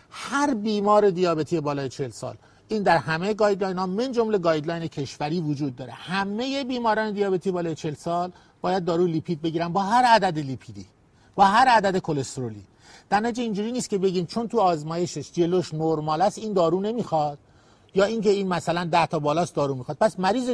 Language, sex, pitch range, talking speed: Persian, male, 155-205 Hz, 180 wpm